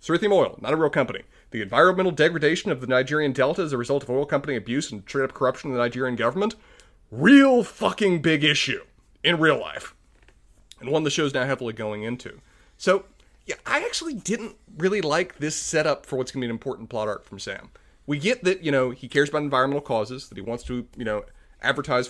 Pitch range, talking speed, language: 120-165 Hz, 215 wpm, English